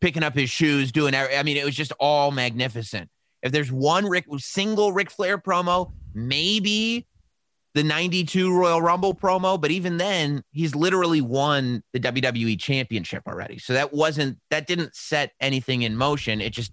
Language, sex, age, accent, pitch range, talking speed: English, male, 30-49, American, 125-170 Hz, 170 wpm